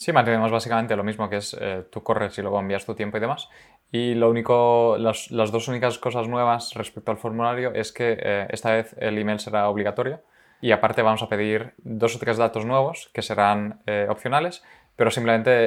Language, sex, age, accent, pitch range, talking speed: Spanish, male, 20-39, Spanish, 100-115 Hz, 205 wpm